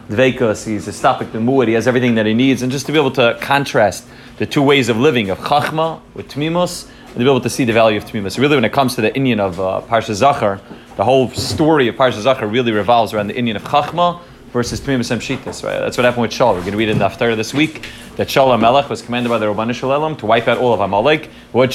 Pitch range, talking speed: 115-145 Hz, 270 wpm